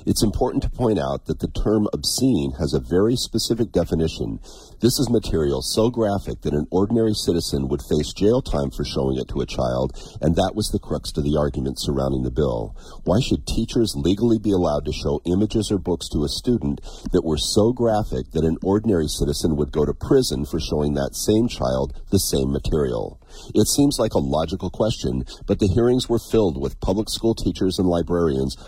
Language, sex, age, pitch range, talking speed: English, male, 50-69, 75-105 Hz, 200 wpm